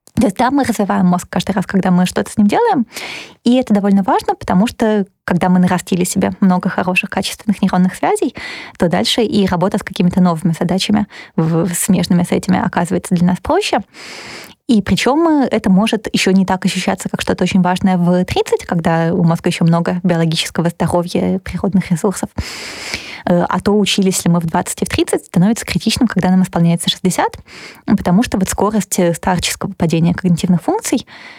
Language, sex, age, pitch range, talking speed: Russian, female, 20-39, 180-215 Hz, 170 wpm